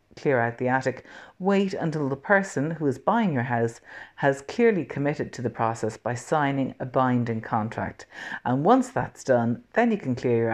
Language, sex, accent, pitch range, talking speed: English, female, Irish, 120-165 Hz, 190 wpm